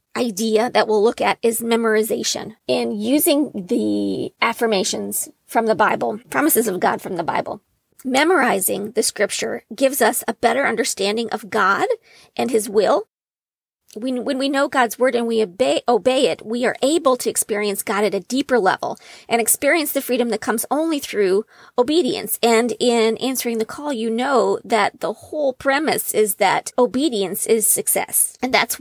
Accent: American